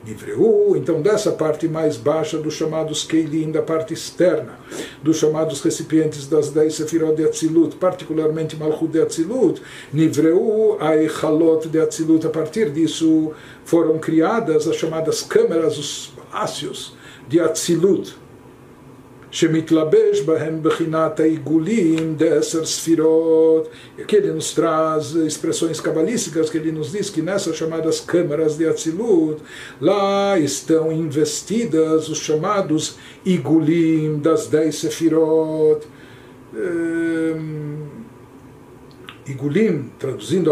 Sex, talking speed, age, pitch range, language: male, 110 wpm, 60-79, 155-170 Hz, Portuguese